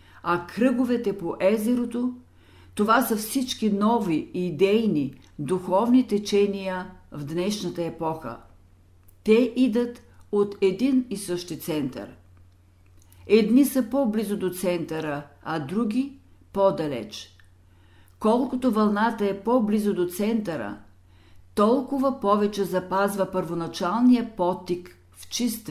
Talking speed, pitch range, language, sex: 105 wpm, 150-220 Hz, Bulgarian, female